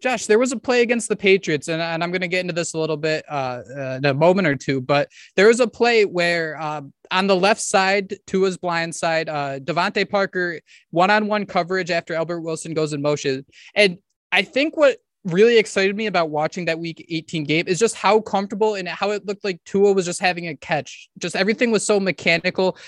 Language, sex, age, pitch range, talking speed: English, male, 20-39, 165-210 Hz, 220 wpm